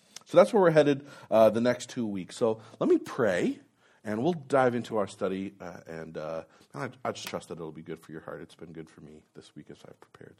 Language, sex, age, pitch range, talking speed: English, male, 30-49, 95-125 Hz, 255 wpm